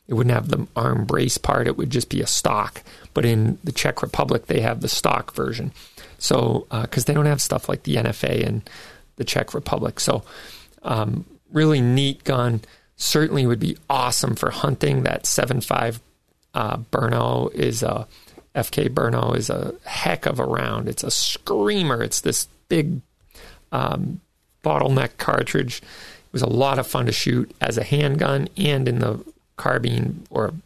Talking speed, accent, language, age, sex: 170 wpm, American, English, 40-59, male